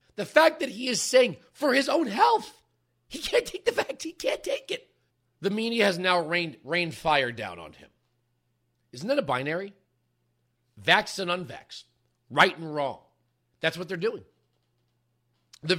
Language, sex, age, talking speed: English, male, 40-59, 165 wpm